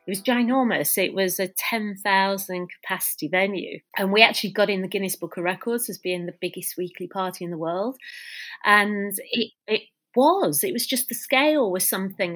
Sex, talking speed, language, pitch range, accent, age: female, 190 wpm, English, 175-210 Hz, British, 30-49